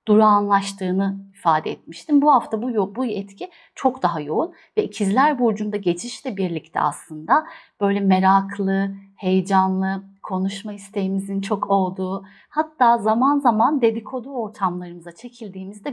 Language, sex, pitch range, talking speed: Turkish, female, 185-235 Hz, 110 wpm